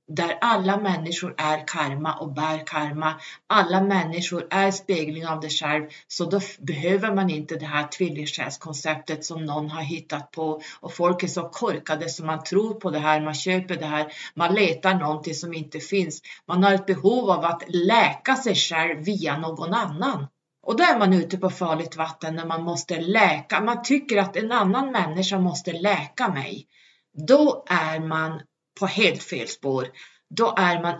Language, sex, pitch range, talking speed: Swedish, female, 155-185 Hz, 180 wpm